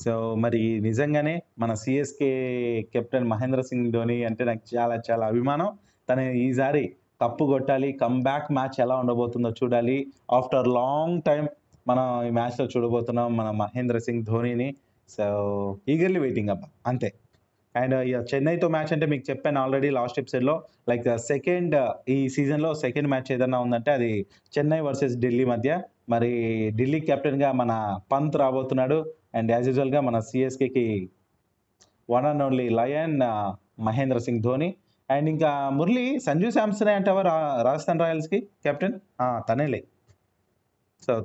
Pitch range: 120-140 Hz